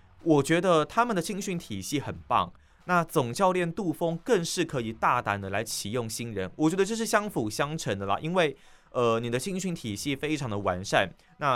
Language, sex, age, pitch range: Chinese, male, 20-39, 110-165 Hz